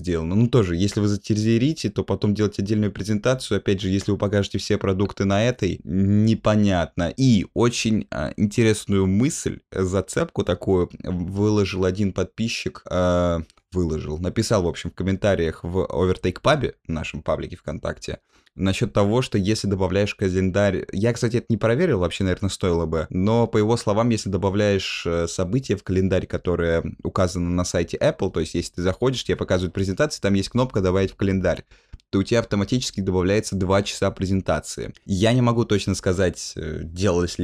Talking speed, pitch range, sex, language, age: 155 wpm, 90-110 Hz, male, Russian, 20-39